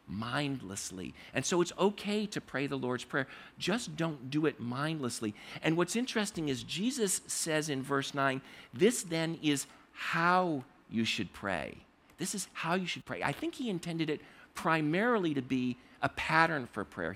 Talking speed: 170 wpm